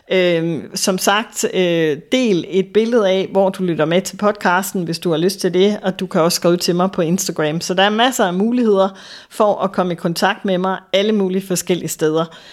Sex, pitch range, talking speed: female, 175-205 Hz, 210 wpm